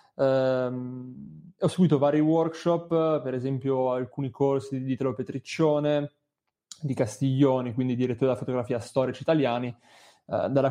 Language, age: Italian, 20-39